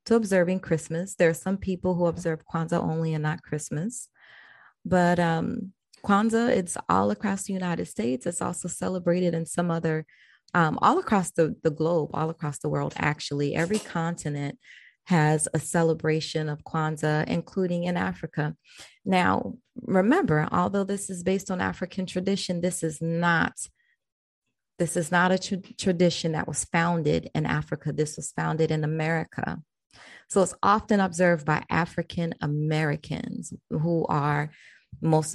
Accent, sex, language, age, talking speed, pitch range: American, female, English, 30-49, 145 wpm, 155-185 Hz